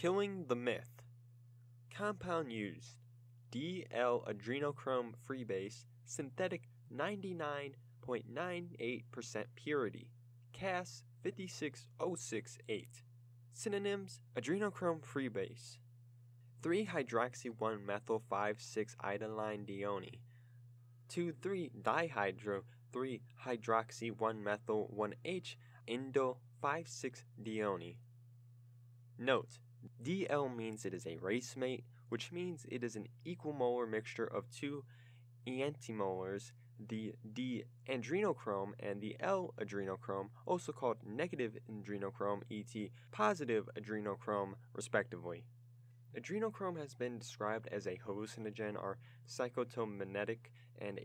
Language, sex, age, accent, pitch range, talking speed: English, male, 20-39, American, 110-130 Hz, 70 wpm